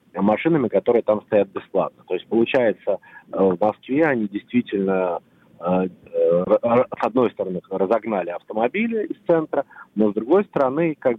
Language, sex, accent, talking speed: Russian, male, native, 130 wpm